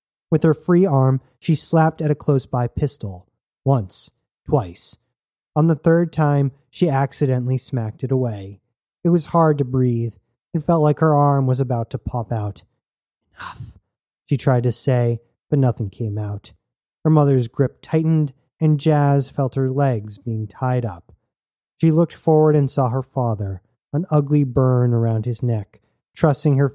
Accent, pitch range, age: American, 115-150 Hz, 20-39